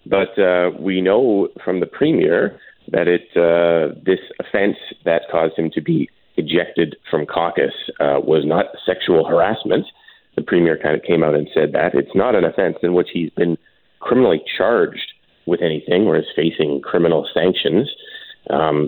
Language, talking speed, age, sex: English, 165 wpm, 30-49, male